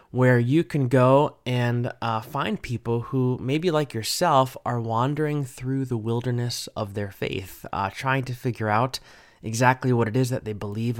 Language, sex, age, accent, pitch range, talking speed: English, male, 20-39, American, 110-135 Hz, 175 wpm